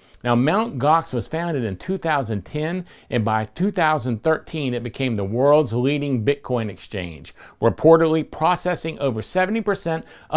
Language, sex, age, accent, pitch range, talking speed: English, male, 50-69, American, 120-165 Hz, 120 wpm